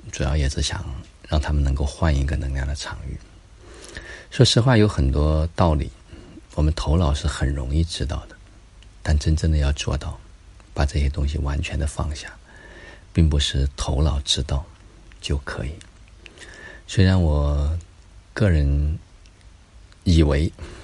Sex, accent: male, native